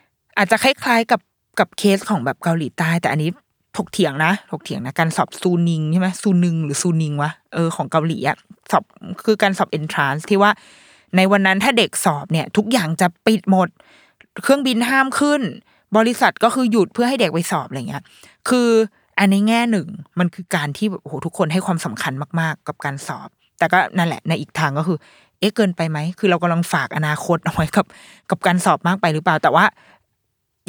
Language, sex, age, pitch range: Thai, female, 20-39, 165-215 Hz